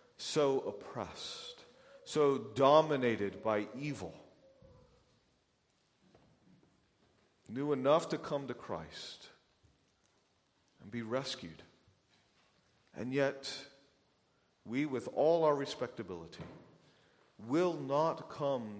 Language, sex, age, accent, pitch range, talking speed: English, male, 40-59, American, 115-165 Hz, 80 wpm